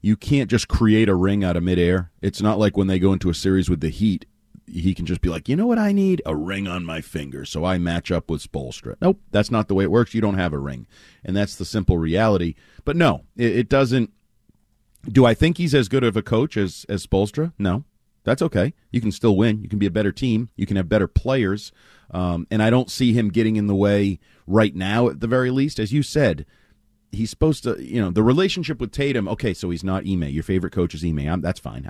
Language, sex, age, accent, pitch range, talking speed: English, male, 40-59, American, 90-115 Hz, 250 wpm